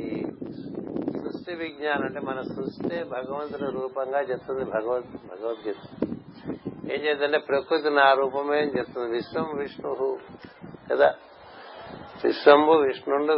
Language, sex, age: Telugu, male, 60-79